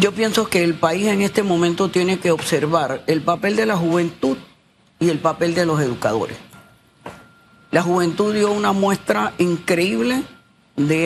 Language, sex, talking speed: Spanish, female, 155 wpm